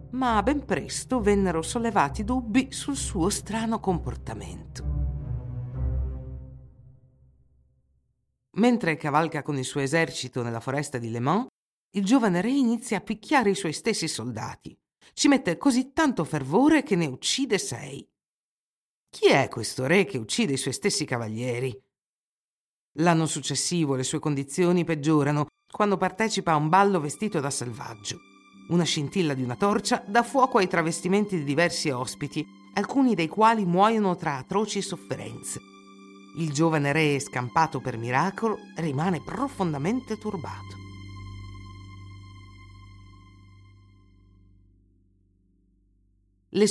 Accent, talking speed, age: native, 120 wpm, 50-69